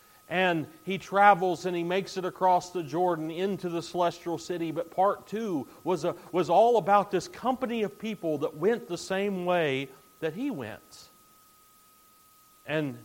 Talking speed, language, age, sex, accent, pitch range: 160 wpm, English, 40-59, male, American, 160-225 Hz